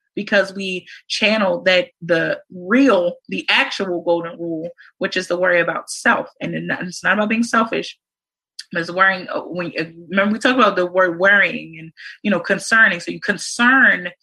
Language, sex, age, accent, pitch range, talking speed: English, female, 30-49, American, 180-235 Hz, 170 wpm